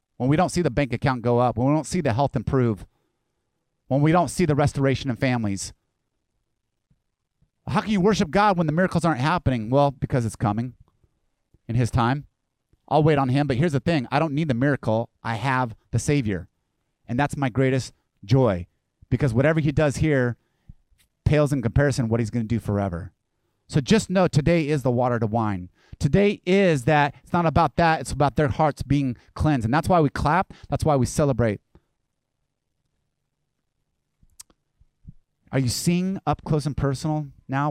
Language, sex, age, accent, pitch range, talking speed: English, male, 30-49, American, 115-150 Hz, 185 wpm